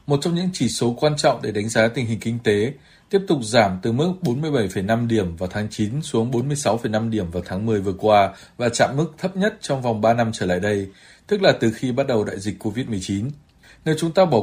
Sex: male